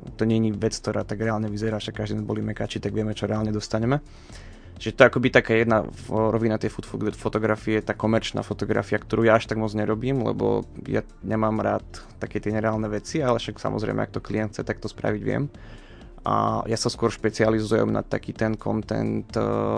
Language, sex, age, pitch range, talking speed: Slovak, male, 20-39, 105-110 Hz, 190 wpm